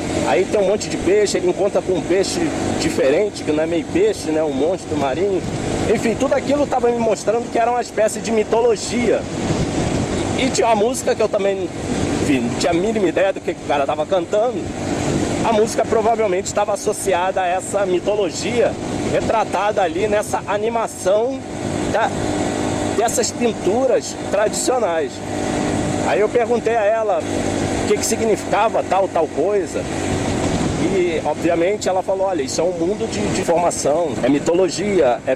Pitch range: 170-225 Hz